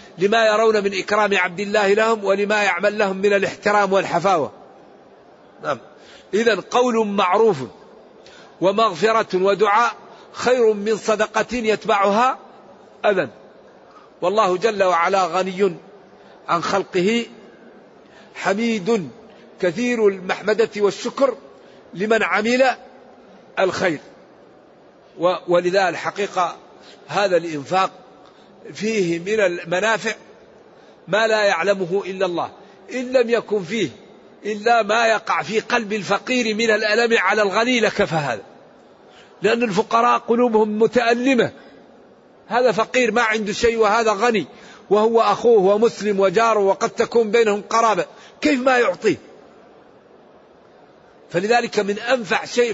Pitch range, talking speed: 195-230 Hz, 105 wpm